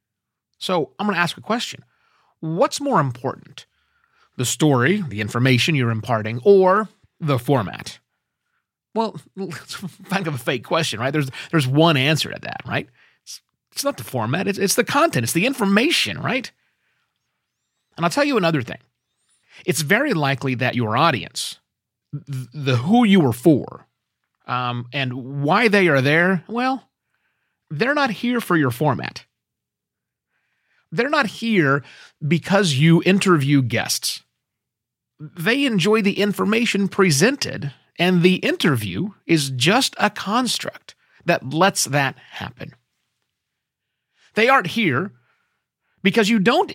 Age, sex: 30-49, male